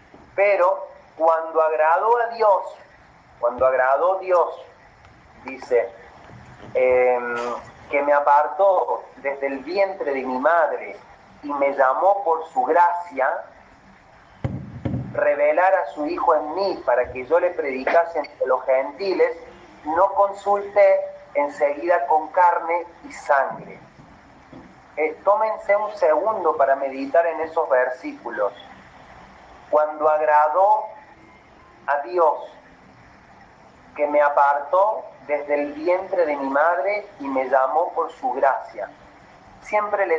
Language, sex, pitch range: Spanish, male, 145-200 Hz